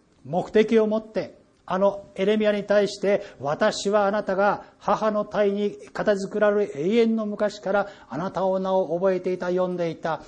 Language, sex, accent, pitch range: Japanese, male, native, 165-195 Hz